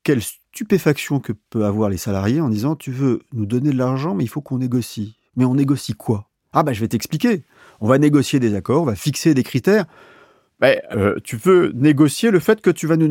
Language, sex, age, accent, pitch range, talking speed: French, male, 40-59, French, 120-180 Hz, 245 wpm